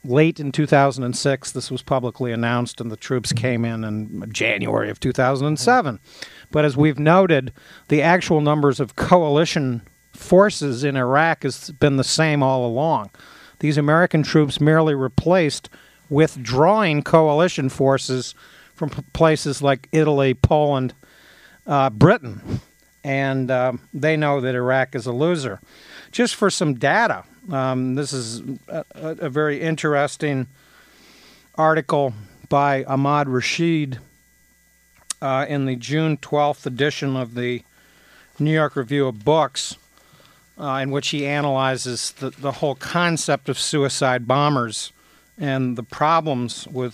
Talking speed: 130 wpm